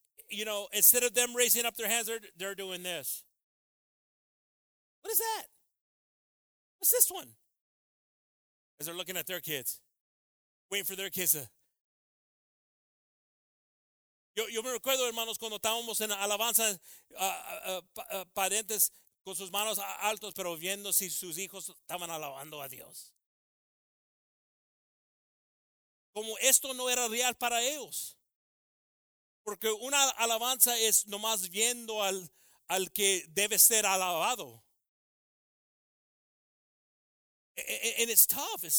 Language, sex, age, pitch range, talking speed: English, male, 40-59, 190-235 Hz, 115 wpm